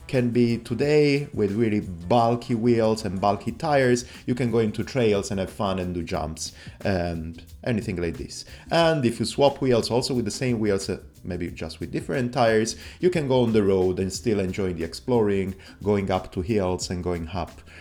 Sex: male